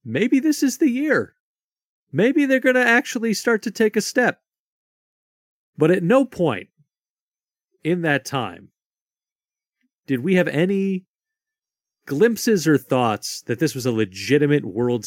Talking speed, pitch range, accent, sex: 140 wpm, 140-225 Hz, American, male